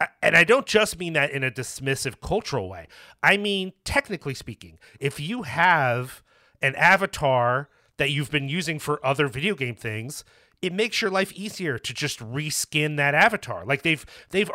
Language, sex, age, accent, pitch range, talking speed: English, male, 30-49, American, 125-170 Hz, 175 wpm